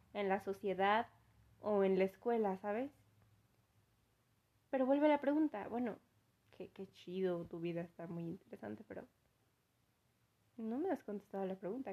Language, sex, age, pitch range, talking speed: Spanish, female, 20-39, 210-270 Hz, 140 wpm